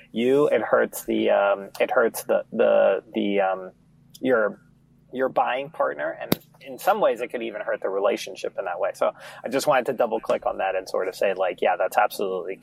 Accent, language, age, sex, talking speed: American, English, 30-49, male, 220 wpm